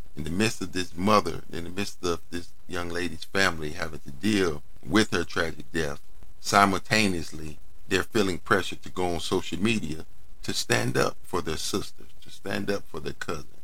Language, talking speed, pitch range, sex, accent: English, 185 wpm, 80-100 Hz, male, American